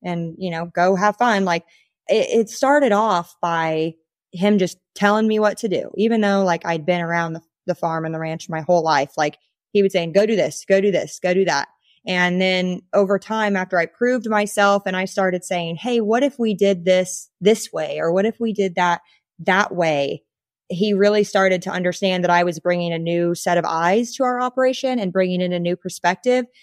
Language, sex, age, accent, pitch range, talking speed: English, female, 20-39, American, 175-210 Hz, 220 wpm